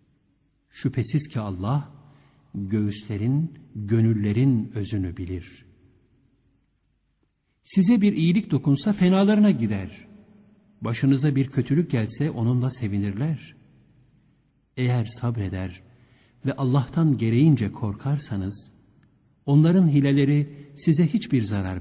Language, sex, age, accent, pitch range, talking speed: Turkish, male, 60-79, native, 110-150 Hz, 85 wpm